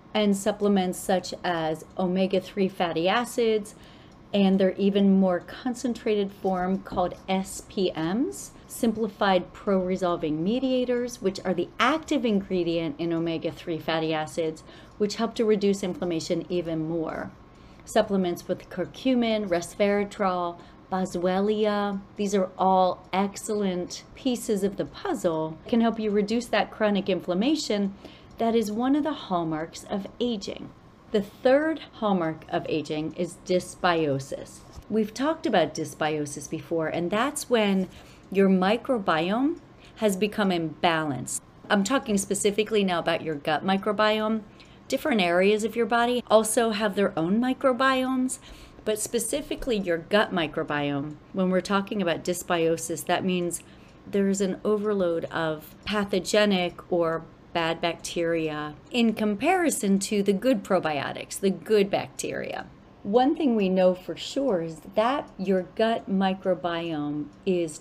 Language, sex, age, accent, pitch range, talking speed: English, female, 40-59, American, 170-215 Hz, 125 wpm